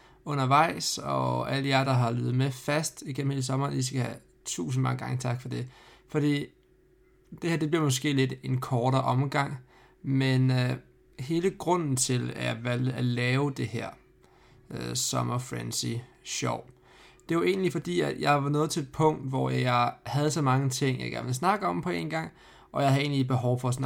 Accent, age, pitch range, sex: native, 20-39, 125-140 Hz, male